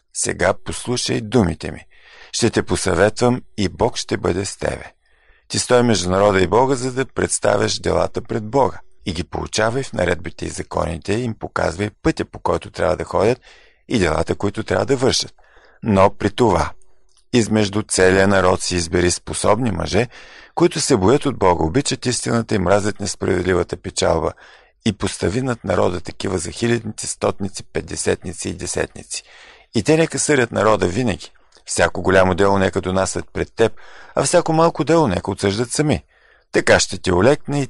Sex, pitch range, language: male, 95-125 Hz, Bulgarian